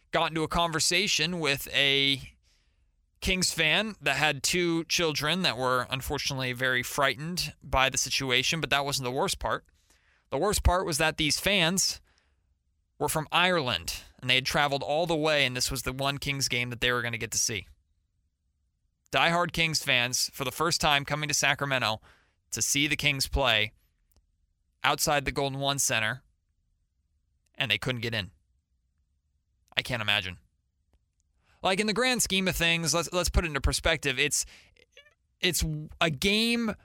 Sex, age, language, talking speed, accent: male, 30-49, English, 170 wpm, American